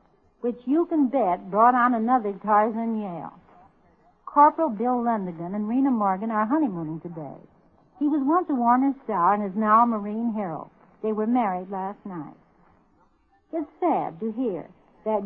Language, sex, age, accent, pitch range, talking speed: English, female, 60-79, American, 195-255 Hz, 155 wpm